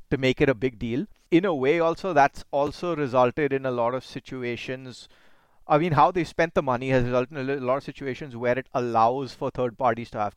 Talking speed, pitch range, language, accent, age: 230 wpm, 125-145 Hz, English, Indian, 30-49